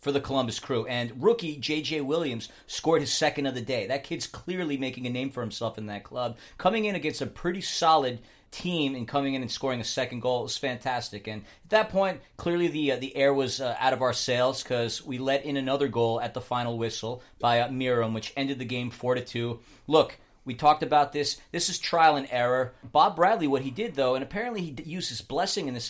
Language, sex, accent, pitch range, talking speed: English, male, American, 120-145 Hz, 235 wpm